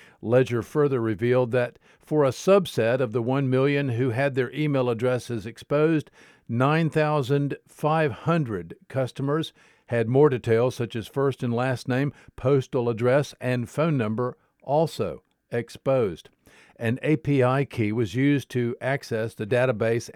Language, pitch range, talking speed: English, 115-140 Hz, 130 wpm